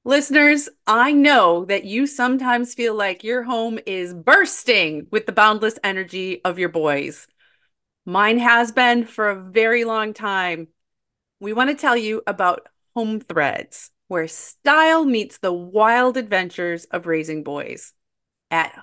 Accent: American